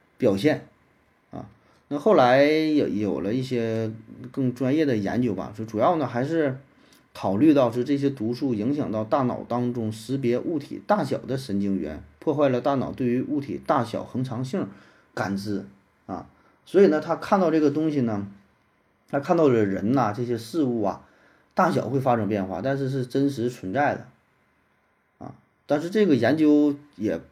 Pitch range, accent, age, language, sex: 110-140 Hz, native, 30-49, Chinese, male